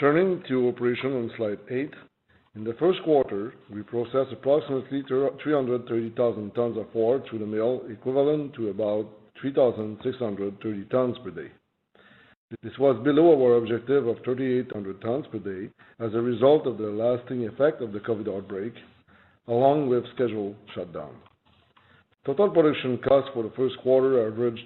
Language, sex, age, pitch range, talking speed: English, male, 50-69, 110-135 Hz, 170 wpm